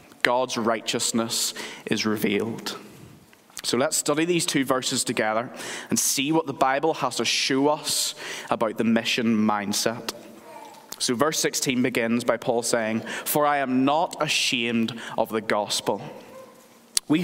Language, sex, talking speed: English, male, 140 wpm